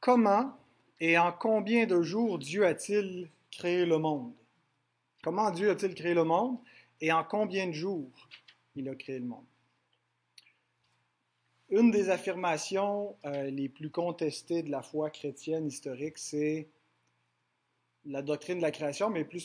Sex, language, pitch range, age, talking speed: male, French, 145-185 Hz, 30-49, 145 wpm